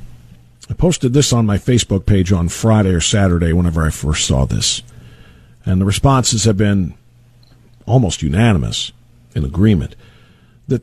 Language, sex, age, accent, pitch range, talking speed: English, male, 50-69, American, 115-160 Hz, 145 wpm